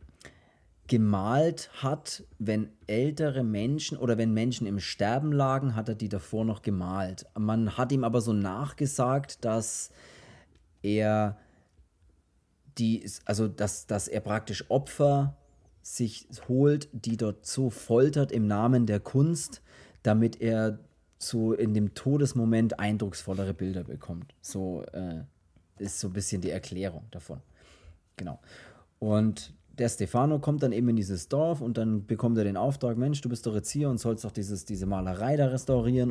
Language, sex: German, male